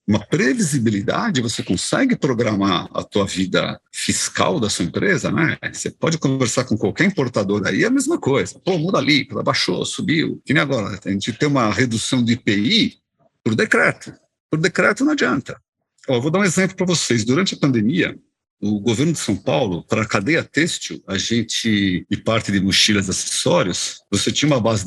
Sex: male